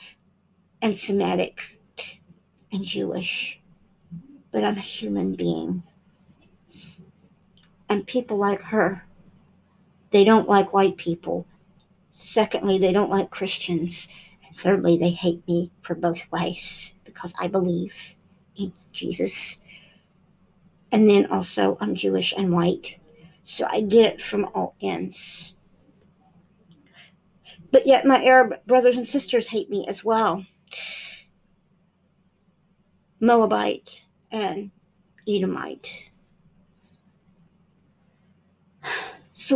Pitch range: 180-220 Hz